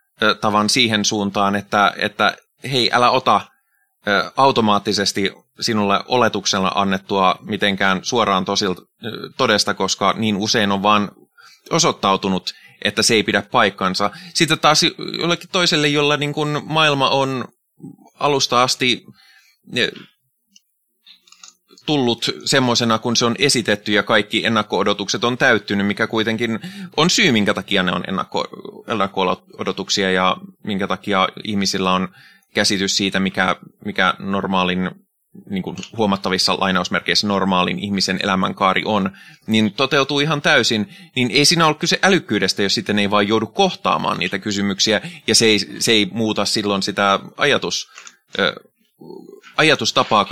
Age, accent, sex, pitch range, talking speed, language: 20-39, native, male, 100-140 Hz, 125 wpm, Finnish